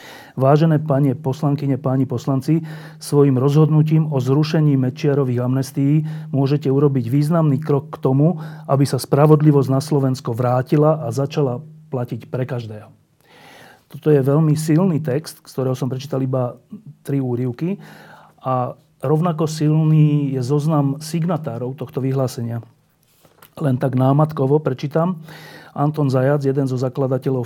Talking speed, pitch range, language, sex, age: 125 wpm, 130-155 Hz, Slovak, male, 40-59